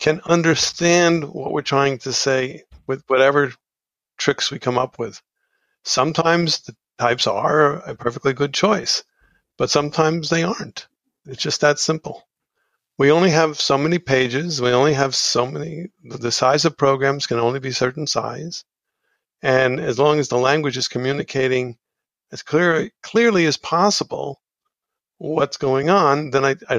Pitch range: 125-160 Hz